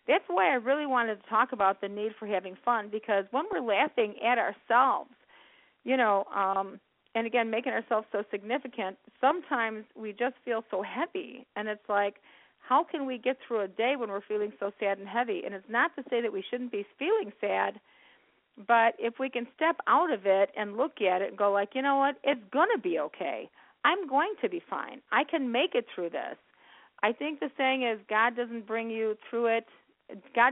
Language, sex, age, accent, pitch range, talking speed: English, female, 40-59, American, 200-250 Hz, 210 wpm